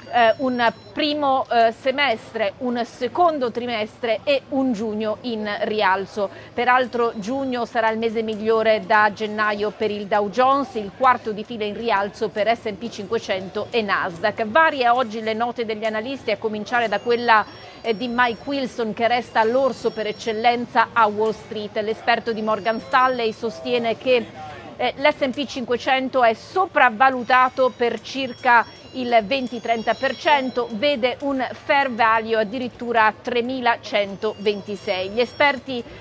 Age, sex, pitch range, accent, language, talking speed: 40-59, female, 220-255 Hz, native, Italian, 135 wpm